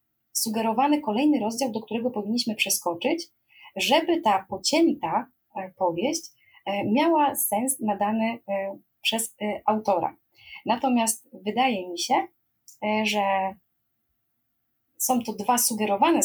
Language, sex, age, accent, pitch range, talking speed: Polish, female, 20-39, native, 205-255 Hz, 90 wpm